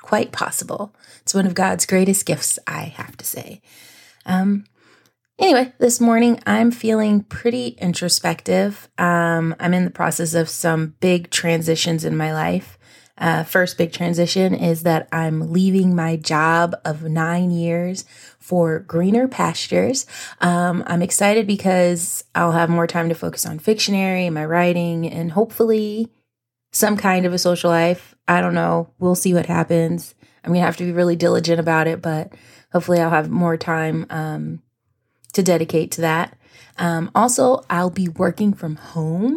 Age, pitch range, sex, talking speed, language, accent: 20-39, 160-190 Hz, female, 160 wpm, English, American